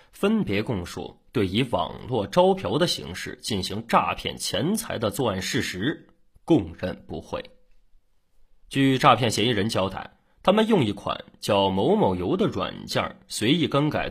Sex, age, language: male, 20-39, Chinese